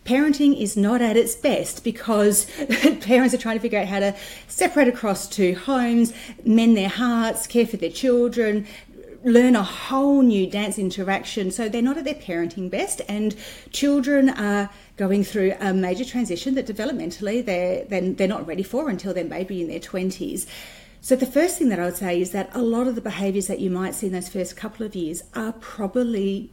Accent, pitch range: Australian, 180-230 Hz